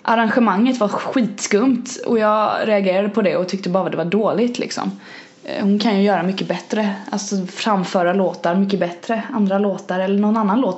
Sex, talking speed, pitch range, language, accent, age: female, 185 wpm, 185-235 Hz, Swedish, native, 20-39